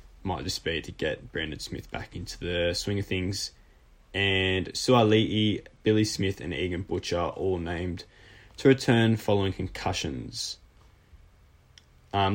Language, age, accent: English, 10-29, Australian